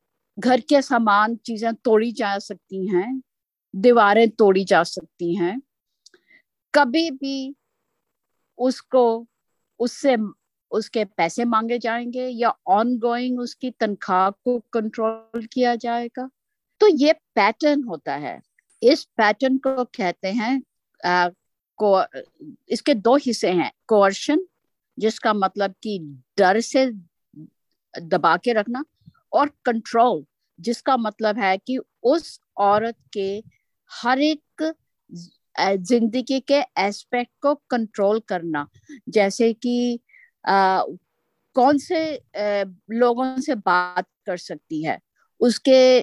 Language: Hindi